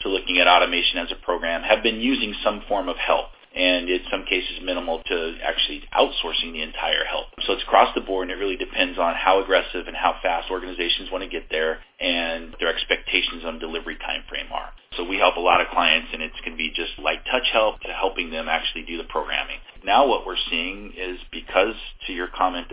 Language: English